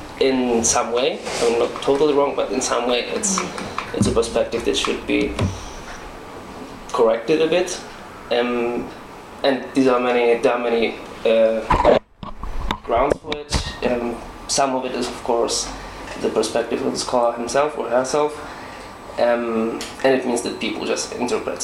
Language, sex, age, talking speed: English, male, 20-39, 145 wpm